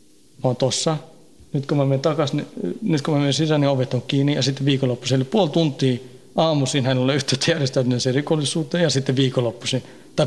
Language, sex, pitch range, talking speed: Finnish, male, 130-145 Hz, 195 wpm